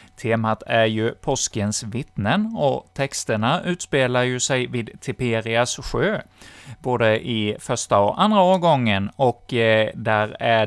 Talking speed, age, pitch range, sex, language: 125 wpm, 30-49, 105-135 Hz, male, Swedish